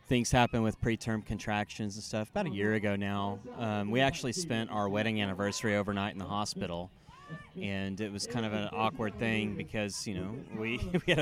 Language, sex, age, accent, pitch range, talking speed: English, male, 30-49, American, 105-120 Hz, 200 wpm